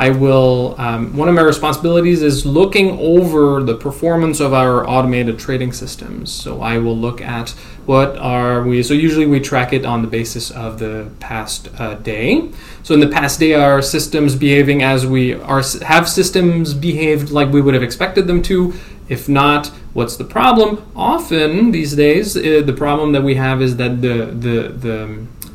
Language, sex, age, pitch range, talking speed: English, male, 20-39, 125-160 Hz, 180 wpm